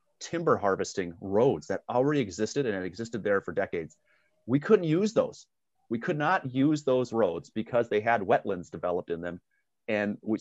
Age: 30-49